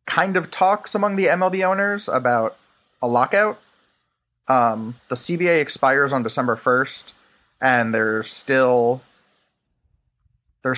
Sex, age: male, 30-49